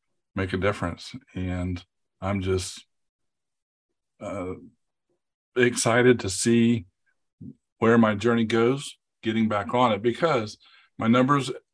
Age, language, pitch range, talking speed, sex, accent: 50-69, English, 95-120 Hz, 105 wpm, male, American